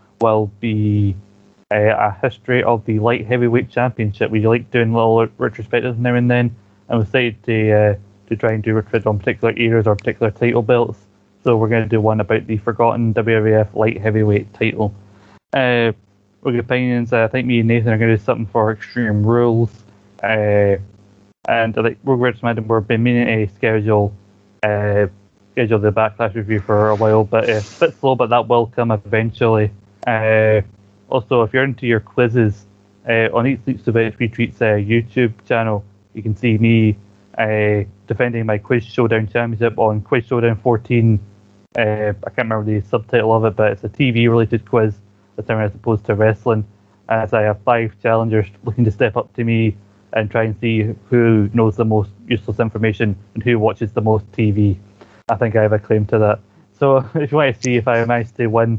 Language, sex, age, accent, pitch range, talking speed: English, male, 20-39, British, 105-120 Hz, 190 wpm